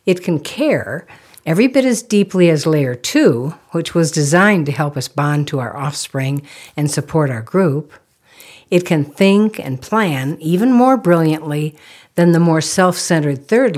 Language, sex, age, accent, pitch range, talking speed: English, female, 60-79, American, 145-205 Hz, 160 wpm